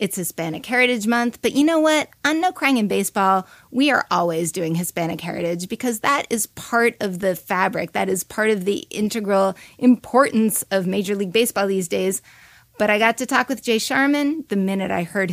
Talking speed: 200 wpm